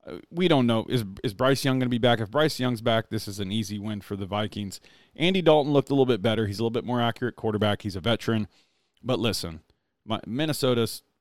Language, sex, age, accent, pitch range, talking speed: English, male, 40-59, American, 105-130 Hz, 235 wpm